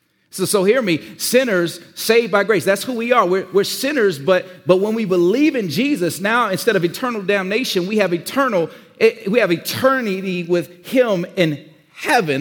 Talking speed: 180 wpm